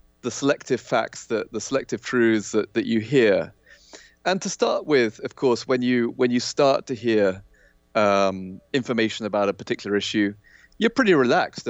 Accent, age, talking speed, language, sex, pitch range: British, 30-49, 170 wpm, English, male, 105-130 Hz